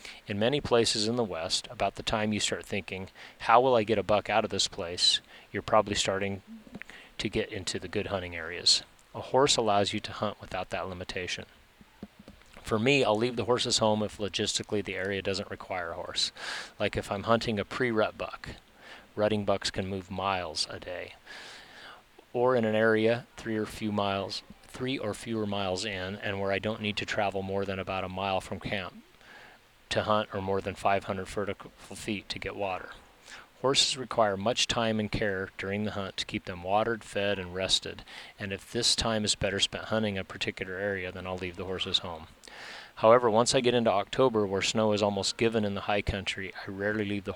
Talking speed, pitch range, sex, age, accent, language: 200 wpm, 95-110 Hz, male, 30-49, American, English